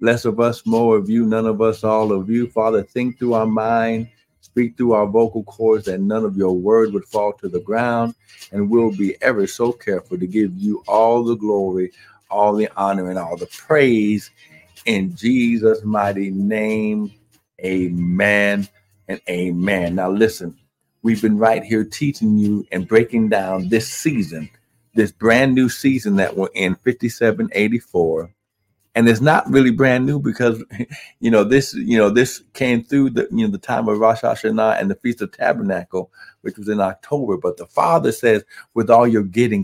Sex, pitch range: male, 100-115 Hz